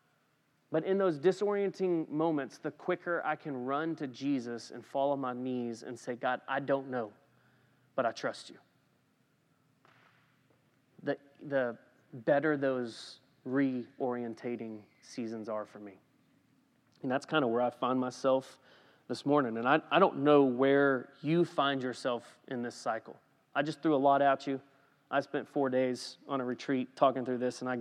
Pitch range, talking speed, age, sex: 130-155 Hz, 165 wpm, 30-49, male